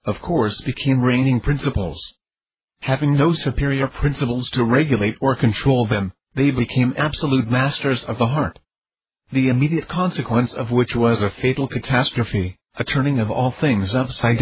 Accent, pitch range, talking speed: American, 115-140 Hz, 150 wpm